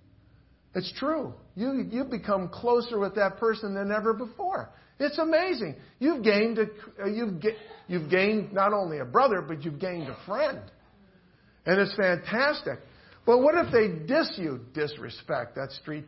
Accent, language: American, English